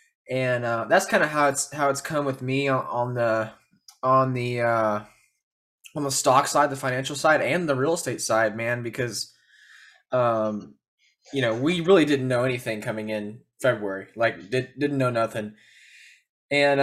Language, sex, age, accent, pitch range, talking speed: English, male, 20-39, American, 115-145 Hz, 170 wpm